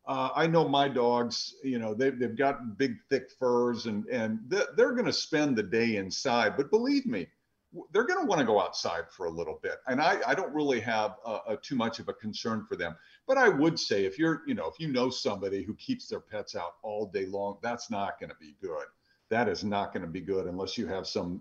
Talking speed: 240 wpm